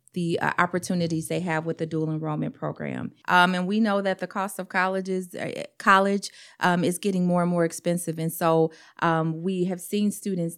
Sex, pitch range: female, 160-190 Hz